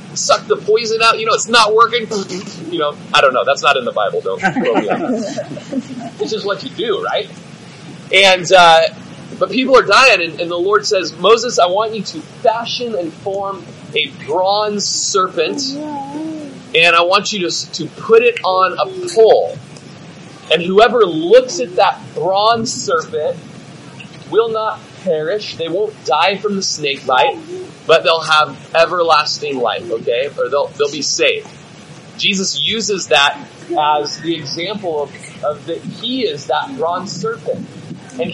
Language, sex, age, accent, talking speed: English, male, 30-49, American, 165 wpm